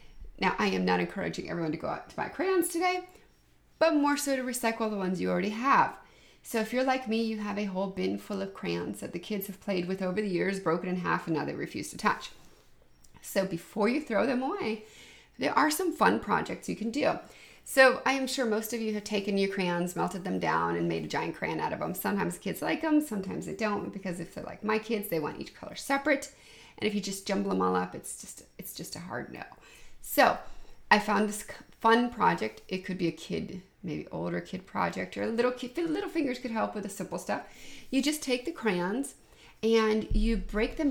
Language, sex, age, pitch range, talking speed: English, female, 30-49, 175-235 Hz, 230 wpm